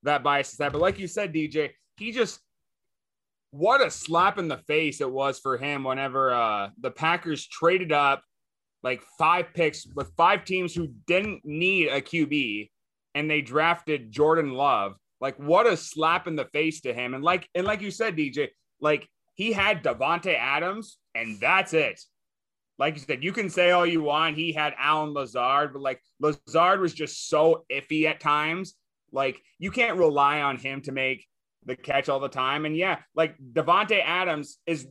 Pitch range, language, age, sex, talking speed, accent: 140-185 Hz, English, 20-39, male, 185 wpm, American